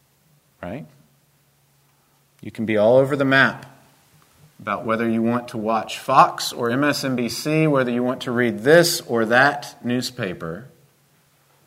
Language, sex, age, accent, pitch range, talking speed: English, male, 40-59, American, 110-140 Hz, 135 wpm